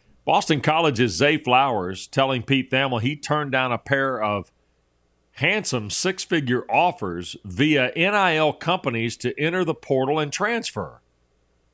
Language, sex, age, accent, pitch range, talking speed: English, male, 50-69, American, 95-140 Hz, 130 wpm